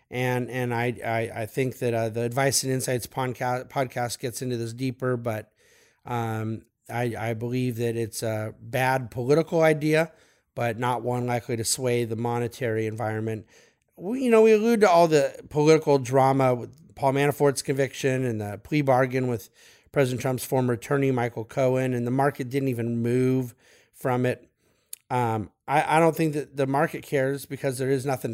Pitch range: 115-145 Hz